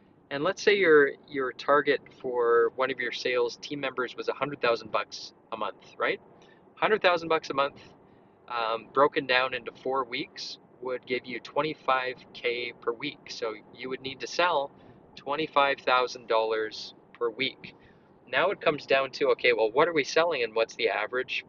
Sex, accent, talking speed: male, American, 160 wpm